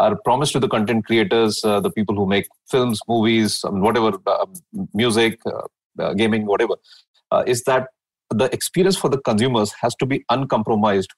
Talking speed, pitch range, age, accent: 185 wpm, 110-130 Hz, 30-49, Indian